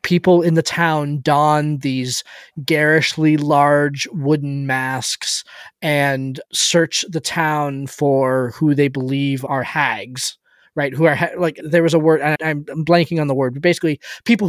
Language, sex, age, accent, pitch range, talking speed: English, male, 20-39, American, 145-175 Hz, 155 wpm